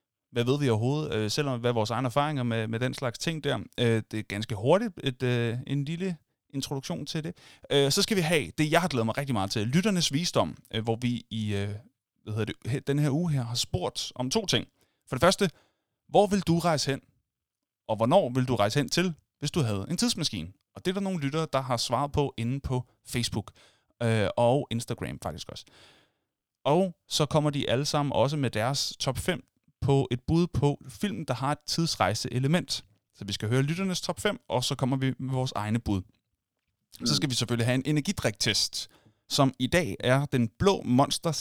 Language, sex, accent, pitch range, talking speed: Danish, male, native, 115-155 Hz, 210 wpm